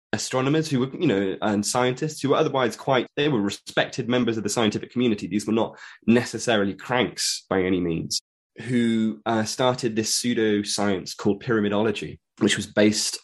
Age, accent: 20-39, British